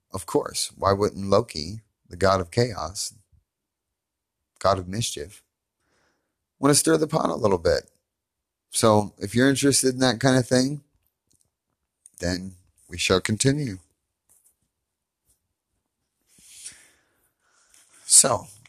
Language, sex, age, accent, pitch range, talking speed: English, male, 30-49, American, 90-110 Hz, 110 wpm